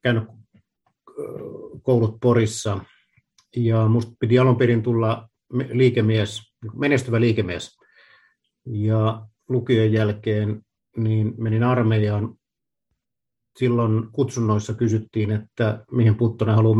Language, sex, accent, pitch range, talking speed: Finnish, male, native, 110-130 Hz, 90 wpm